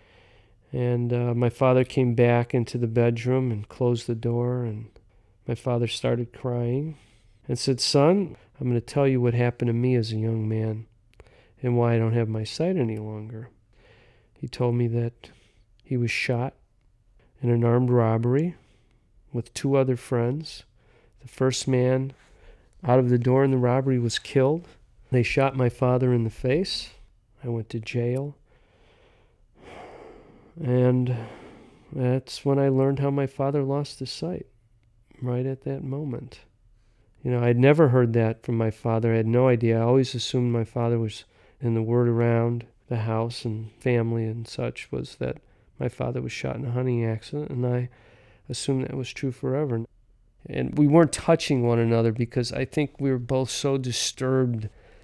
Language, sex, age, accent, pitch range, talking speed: English, male, 40-59, American, 115-130 Hz, 170 wpm